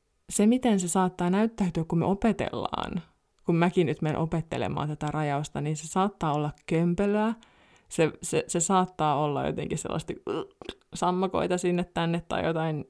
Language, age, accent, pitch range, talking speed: Finnish, 20-39, native, 160-210 Hz, 150 wpm